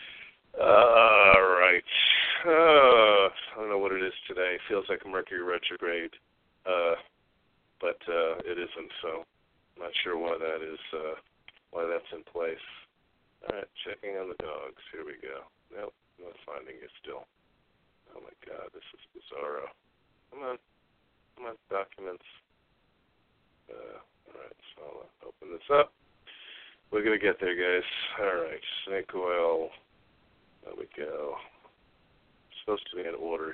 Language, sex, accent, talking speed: English, male, American, 145 wpm